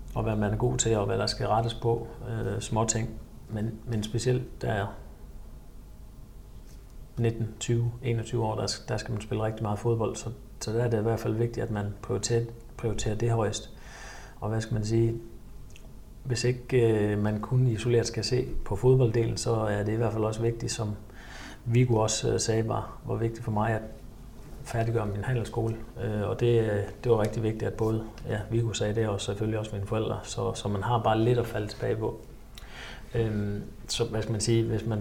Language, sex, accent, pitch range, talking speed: Danish, male, native, 110-120 Hz, 200 wpm